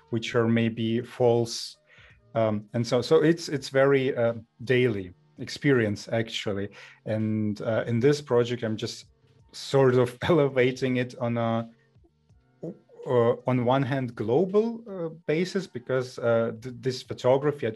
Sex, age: male, 30-49